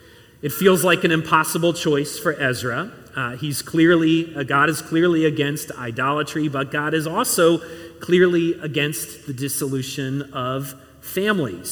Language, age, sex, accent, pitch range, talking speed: English, 40-59, male, American, 120-160 Hz, 140 wpm